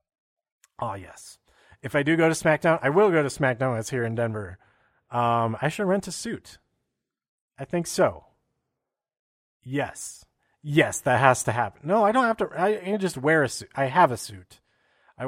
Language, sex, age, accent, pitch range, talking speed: English, male, 30-49, American, 125-170 Hz, 190 wpm